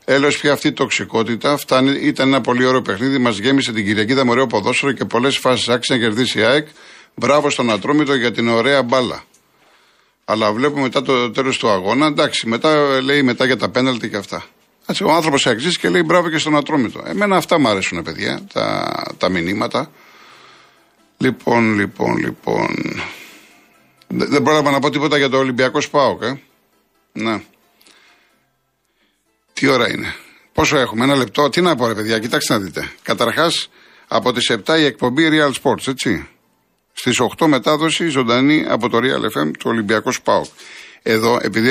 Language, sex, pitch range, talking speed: Greek, male, 110-145 Hz, 165 wpm